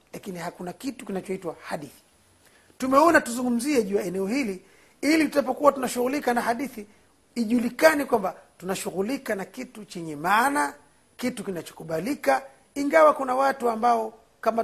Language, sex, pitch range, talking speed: Swahili, male, 180-250 Hz, 120 wpm